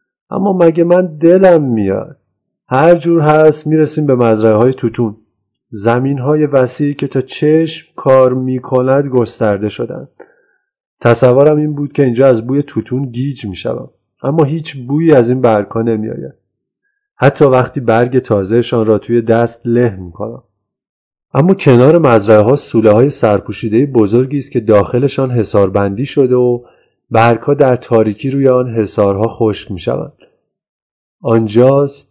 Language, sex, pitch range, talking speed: Persian, male, 105-140 Hz, 135 wpm